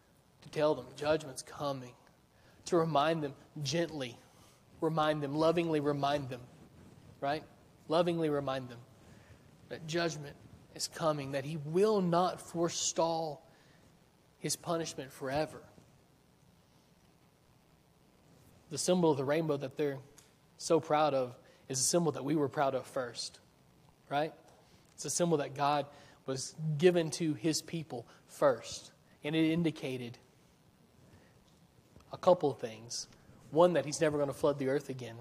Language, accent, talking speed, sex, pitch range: English, American, 135 wpm, male, 135-160 Hz